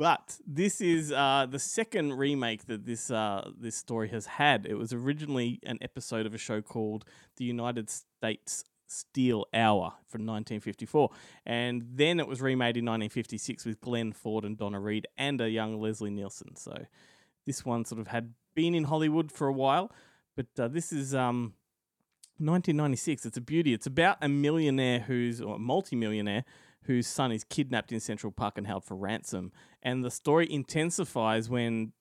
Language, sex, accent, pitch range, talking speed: English, male, Australian, 115-140 Hz, 175 wpm